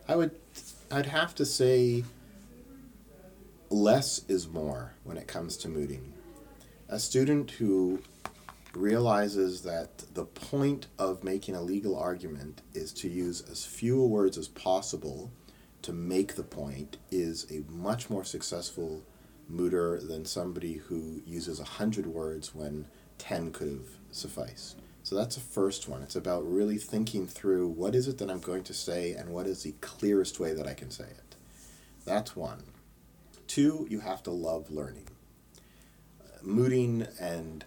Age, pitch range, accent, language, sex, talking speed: 40-59, 85-115 Hz, American, English, male, 155 wpm